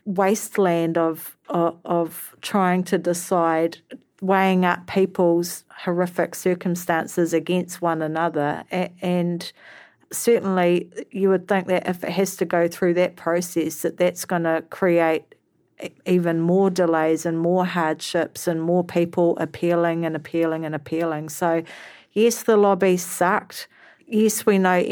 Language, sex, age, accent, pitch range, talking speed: English, female, 40-59, Australian, 165-185 Hz, 135 wpm